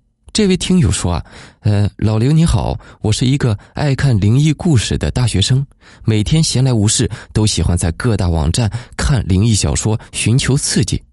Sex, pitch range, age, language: male, 95-125 Hz, 20-39, Chinese